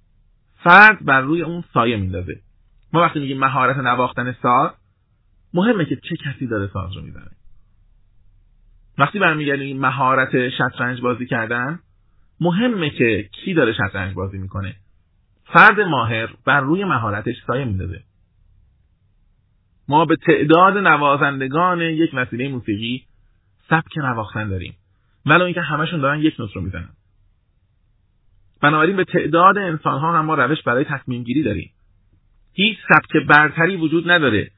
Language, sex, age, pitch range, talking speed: Persian, male, 30-49, 100-145 Hz, 130 wpm